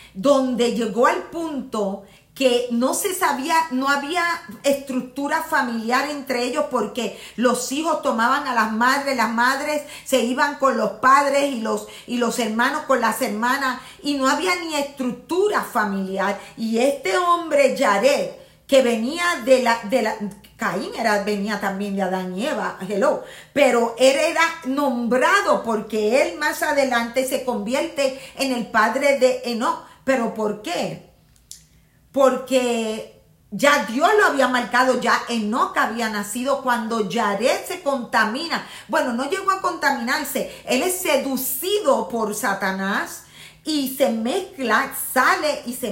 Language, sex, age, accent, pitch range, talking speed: Spanish, female, 50-69, American, 230-280 Hz, 140 wpm